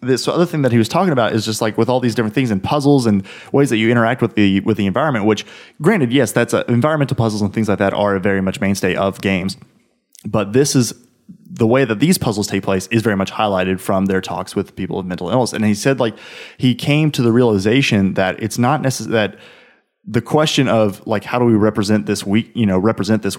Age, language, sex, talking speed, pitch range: 20-39, English, male, 245 wpm, 95-120 Hz